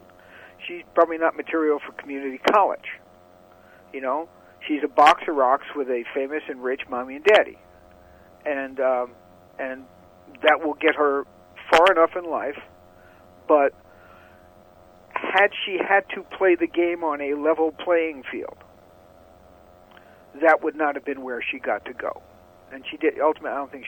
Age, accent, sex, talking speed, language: 50-69, American, male, 160 wpm, English